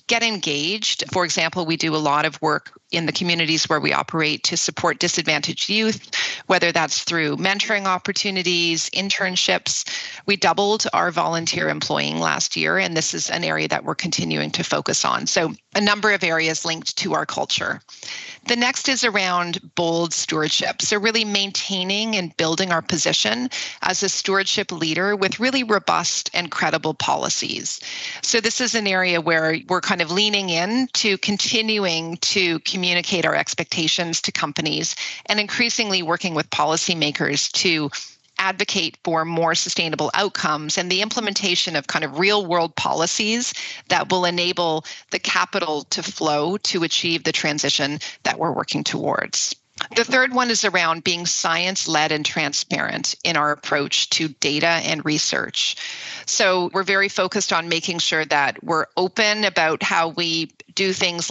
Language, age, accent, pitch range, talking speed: English, 40-59, American, 160-195 Hz, 160 wpm